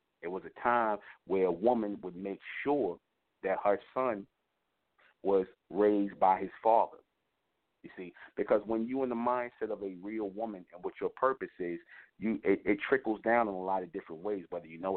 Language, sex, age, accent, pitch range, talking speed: English, male, 40-59, American, 95-110 Hz, 195 wpm